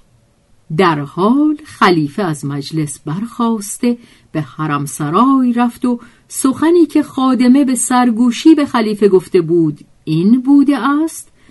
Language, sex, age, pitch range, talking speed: Persian, female, 50-69, 160-245 Hz, 120 wpm